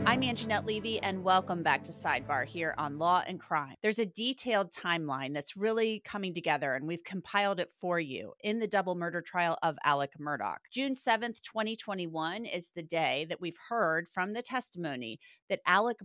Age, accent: 30-49, American